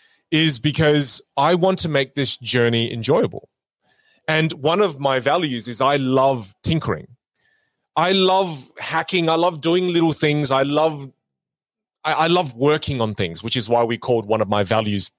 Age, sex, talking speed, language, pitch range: 30-49, male, 170 wpm, English, 120-160 Hz